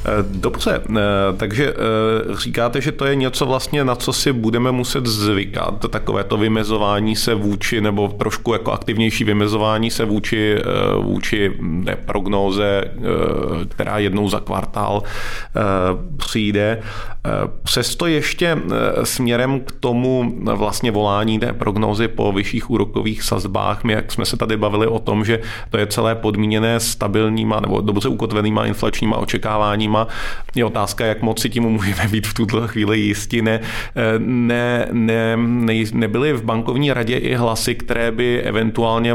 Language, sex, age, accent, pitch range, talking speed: Czech, male, 40-59, native, 105-120 Hz, 140 wpm